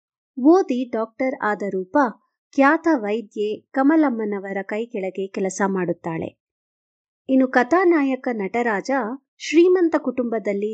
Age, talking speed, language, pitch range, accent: 50-69, 95 wpm, Kannada, 215-285 Hz, native